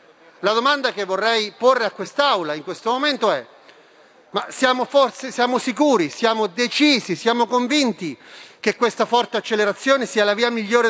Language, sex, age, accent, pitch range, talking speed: Italian, male, 40-59, native, 200-240 Hz, 150 wpm